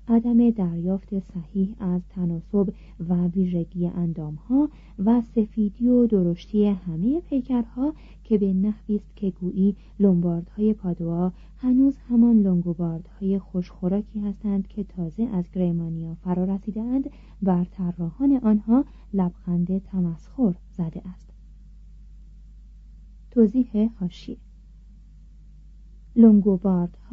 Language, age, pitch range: Persian, 40-59, 175-230 Hz